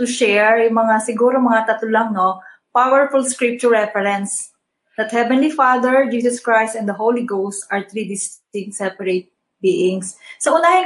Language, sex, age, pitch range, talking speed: Filipino, female, 20-39, 205-255 Hz, 150 wpm